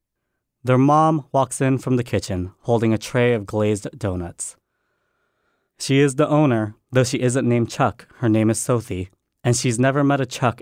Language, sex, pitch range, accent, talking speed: English, male, 105-130 Hz, American, 180 wpm